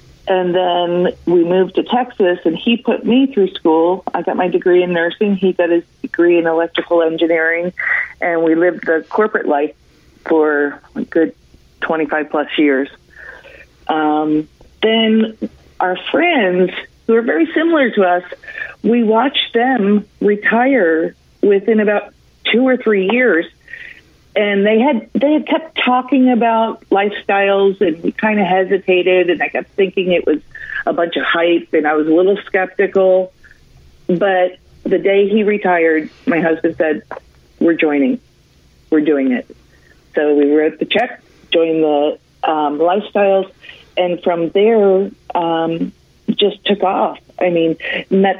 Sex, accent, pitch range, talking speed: female, American, 165-215 Hz, 145 wpm